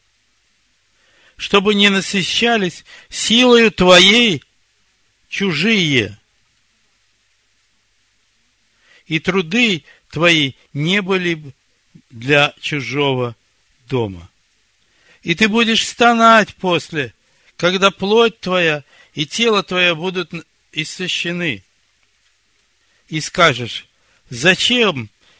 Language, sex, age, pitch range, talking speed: Russian, male, 60-79, 115-180 Hz, 75 wpm